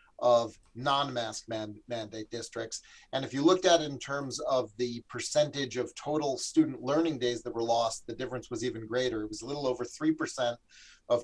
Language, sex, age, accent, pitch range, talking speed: English, male, 30-49, American, 115-140 Hz, 200 wpm